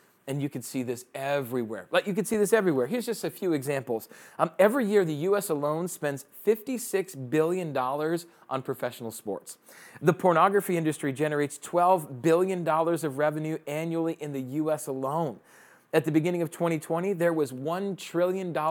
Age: 40-59